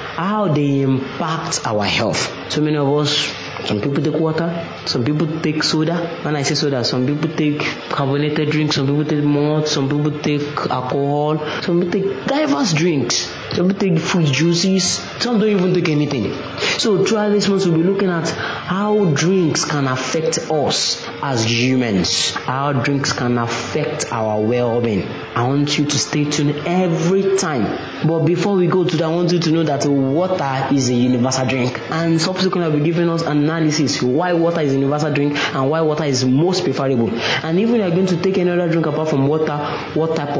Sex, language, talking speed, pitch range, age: male, English, 190 wpm, 125-160 Hz, 30-49